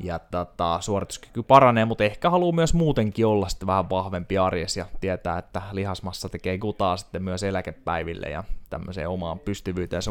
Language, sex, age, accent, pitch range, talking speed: Finnish, male, 20-39, native, 95-115 Hz, 165 wpm